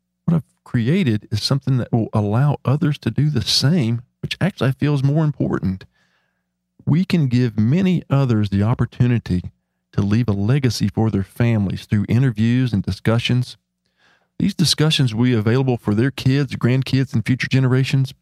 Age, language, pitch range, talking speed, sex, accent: 40-59, English, 100-130 Hz, 150 wpm, male, American